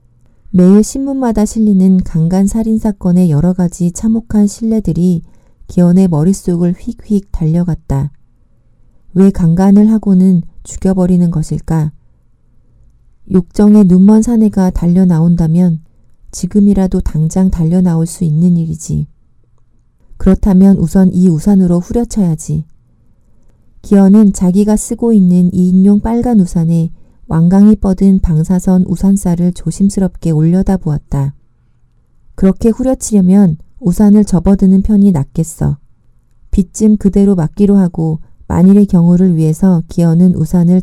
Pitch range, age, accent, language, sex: 160-200 Hz, 40-59, native, Korean, female